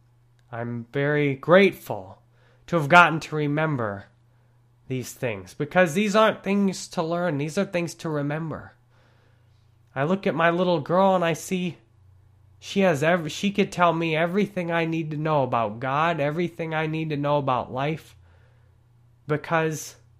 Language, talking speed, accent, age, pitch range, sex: English, 155 wpm, American, 20-39, 120-170 Hz, male